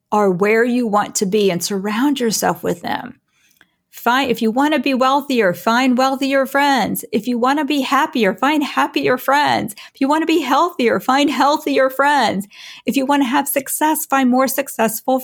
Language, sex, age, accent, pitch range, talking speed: English, female, 40-59, American, 200-265 Hz, 190 wpm